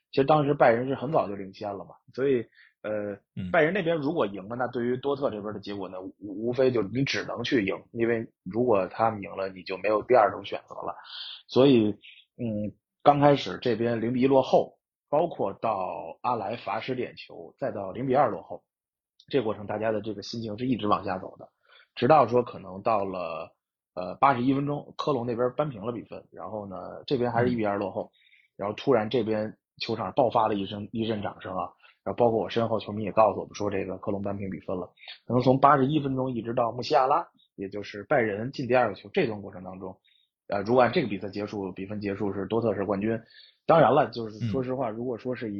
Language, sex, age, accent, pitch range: Chinese, male, 20-39, native, 100-125 Hz